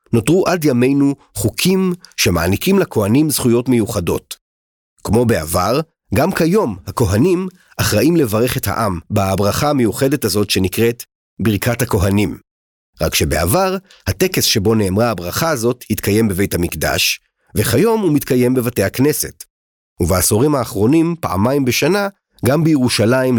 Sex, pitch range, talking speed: male, 105-145 Hz, 115 wpm